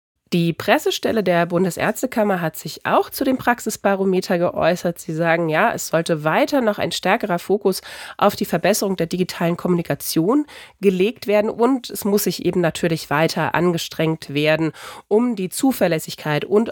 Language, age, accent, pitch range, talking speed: German, 30-49, German, 160-210 Hz, 150 wpm